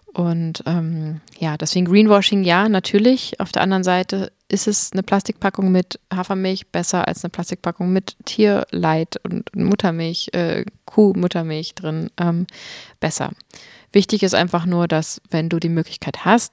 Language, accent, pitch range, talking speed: German, German, 170-195 Hz, 145 wpm